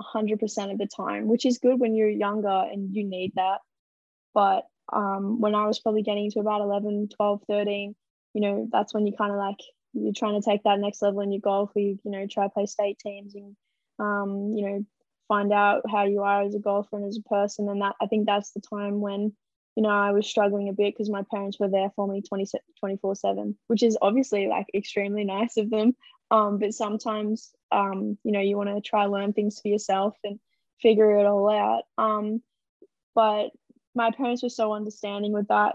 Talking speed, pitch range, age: 220 wpm, 200-220 Hz, 10-29